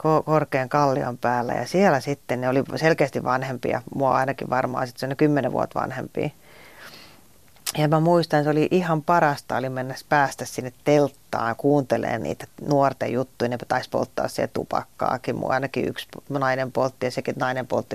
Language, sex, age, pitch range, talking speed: Finnish, female, 30-49, 125-150 Hz, 165 wpm